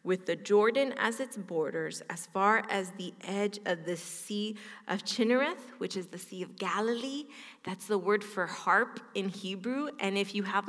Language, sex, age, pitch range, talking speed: English, female, 20-39, 180-225 Hz, 185 wpm